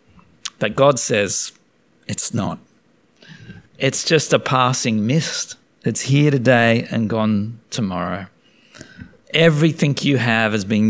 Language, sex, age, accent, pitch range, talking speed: English, male, 50-69, Australian, 105-130 Hz, 115 wpm